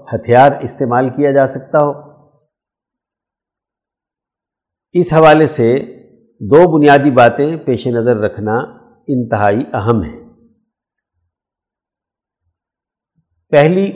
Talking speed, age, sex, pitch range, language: 80 wpm, 60-79, male, 120-160 Hz, Urdu